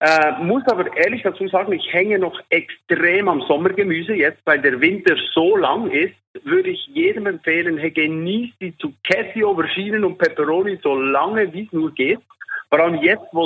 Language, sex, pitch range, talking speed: German, male, 165-210 Hz, 175 wpm